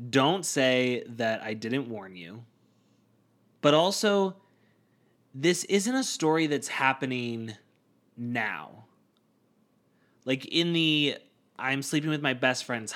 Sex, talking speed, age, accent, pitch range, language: male, 115 wpm, 20-39, American, 120-150 Hz, English